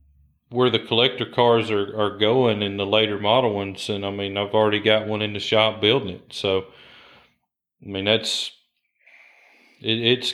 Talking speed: 175 wpm